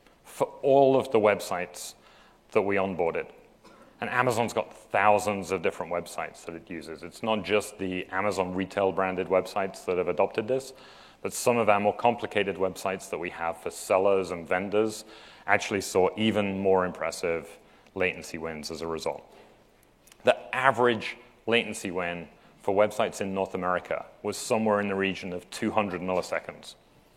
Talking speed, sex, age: 155 wpm, male, 30-49